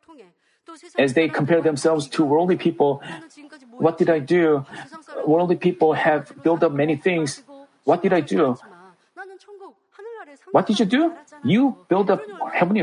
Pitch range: 155-255 Hz